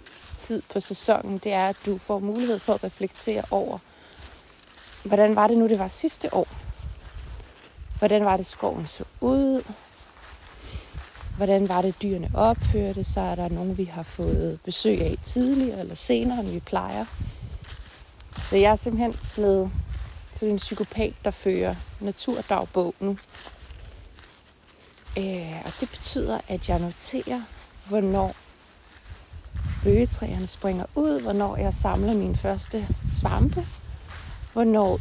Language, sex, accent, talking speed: Danish, female, native, 130 wpm